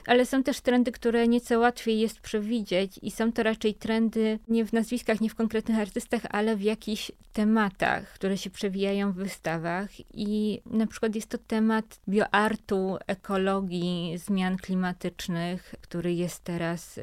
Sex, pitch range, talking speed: female, 190-225 Hz, 150 wpm